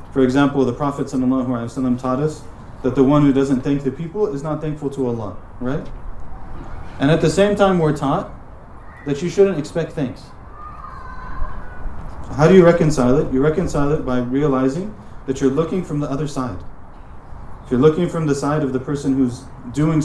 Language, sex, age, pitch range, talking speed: English, male, 30-49, 120-155 Hz, 185 wpm